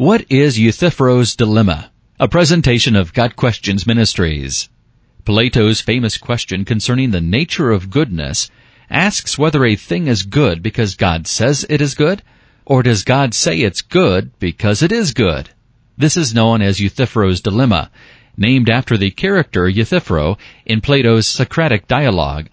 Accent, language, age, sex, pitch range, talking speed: American, English, 40-59, male, 95-130 Hz, 145 wpm